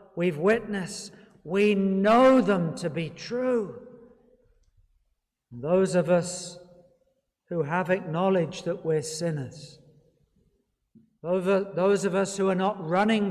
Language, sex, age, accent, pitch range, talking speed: English, male, 60-79, British, 175-220 Hz, 110 wpm